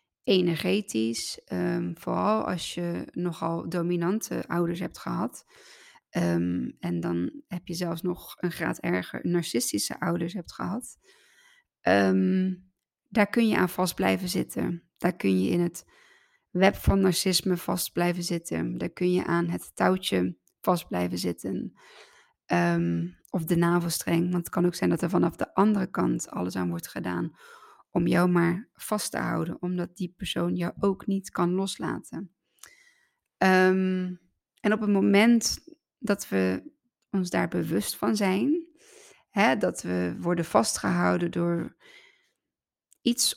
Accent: Dutch